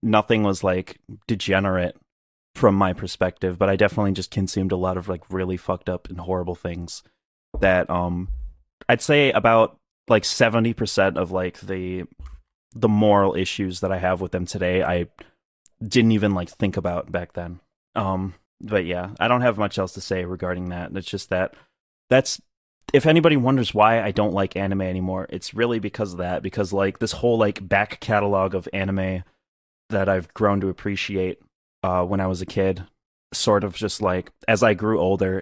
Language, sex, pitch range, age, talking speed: English, male, 95-105 Hz, 20-39, 180 wpm